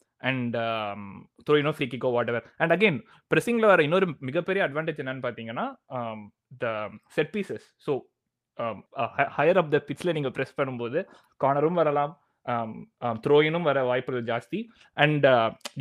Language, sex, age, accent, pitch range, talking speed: Tamil, male, 20-39, native, 120-155 Hz, 165 wpm